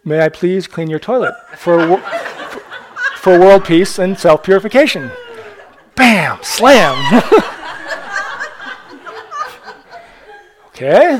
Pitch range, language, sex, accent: 155-225 Hz, English, male, American